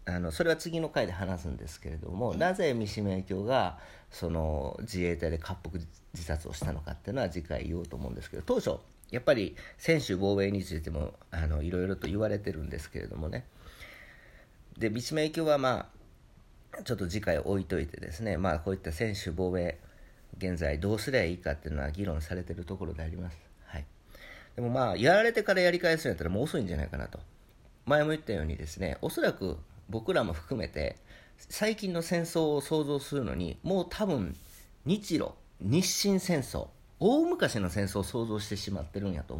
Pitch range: 85-125 Hz